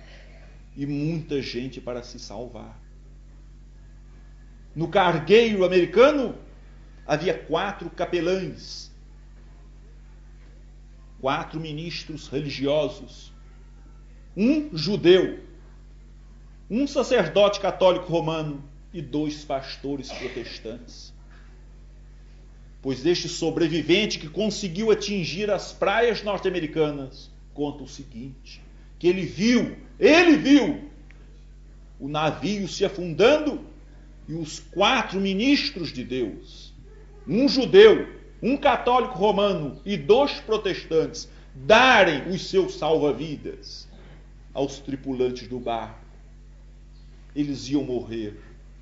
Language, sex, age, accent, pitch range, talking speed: Portuguese, male, 40-59, Brazilian, 135-195 Hz, 85 wpm